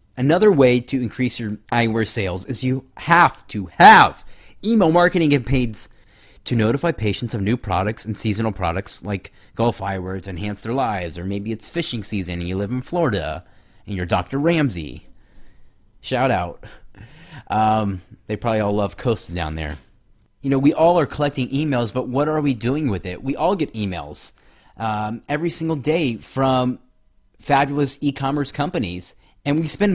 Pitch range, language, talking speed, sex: 105-135 Hz, English, 170 wpm, male